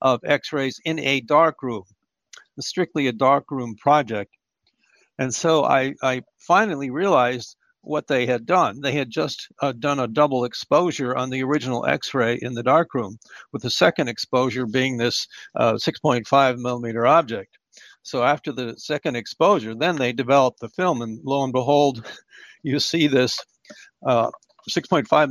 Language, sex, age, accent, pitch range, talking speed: English, male, 60-79, American, 120-145 Hz, 160 wpm